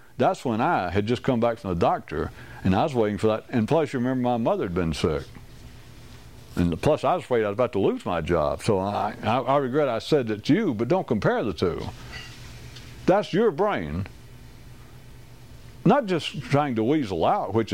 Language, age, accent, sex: English, 60-79, American, male